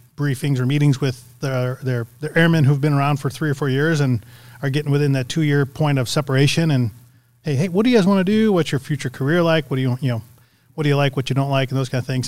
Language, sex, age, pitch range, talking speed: English, male, 30-49, 125-150 Hz, 285 wpm